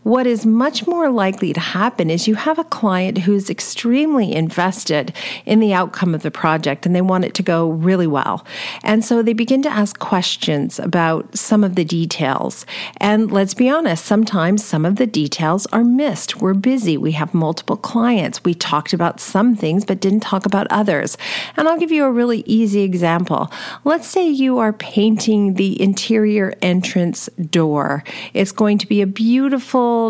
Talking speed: 180 wpm